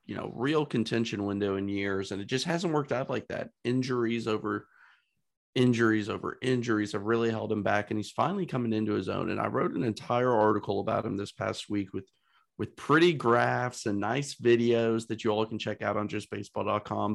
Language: English